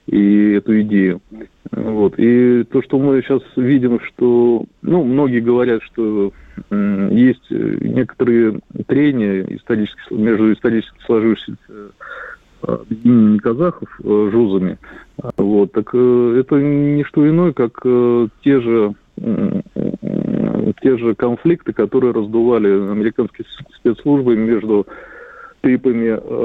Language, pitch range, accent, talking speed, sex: Russian, 105-125 Hz, native, 115 wpm, male